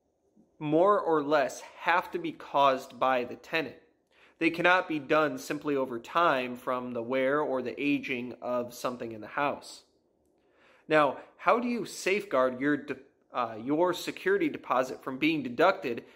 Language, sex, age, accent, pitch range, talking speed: English, male, 30-49, American, 135-180 Hz, 150 wpm